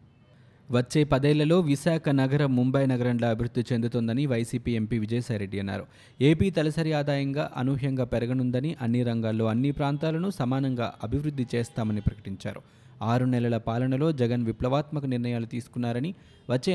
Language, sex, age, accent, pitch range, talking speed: Telugu, male, 20-39, native, 115-145 Hz, 120 wpm